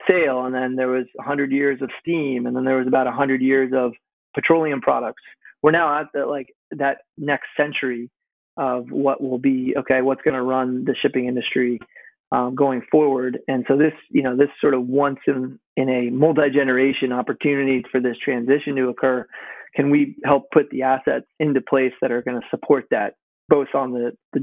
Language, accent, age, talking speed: English, American, 30-49, 200 wpm